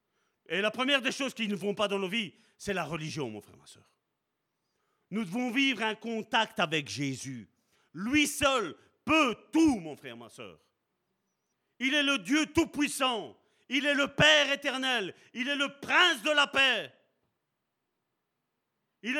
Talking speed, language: 165 wpm, French